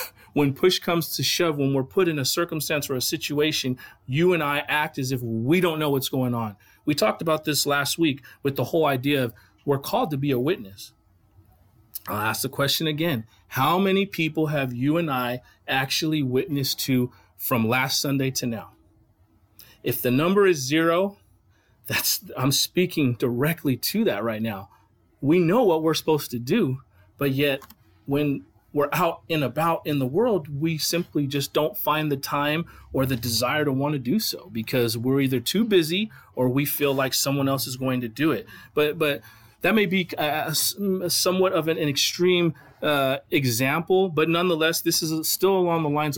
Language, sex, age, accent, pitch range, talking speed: English, male, 40-59, American, 125-160 Hz, 190 wpm